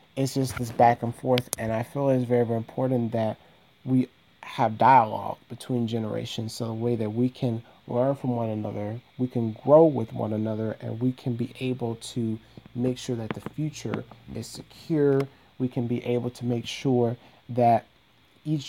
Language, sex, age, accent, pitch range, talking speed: English, male, 30-49, American, 115-130 Hz, 185 wpm